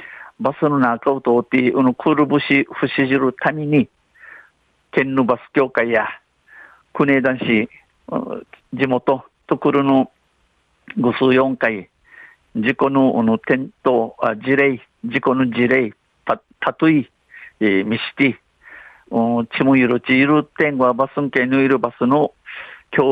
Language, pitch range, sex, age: Japanese, 120-145 Hz, male, 50-69